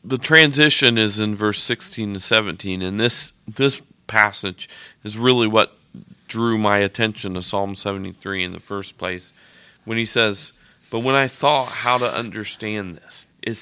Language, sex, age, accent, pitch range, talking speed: English, male, 40-59, American, 100-125 Hz, 165 wpm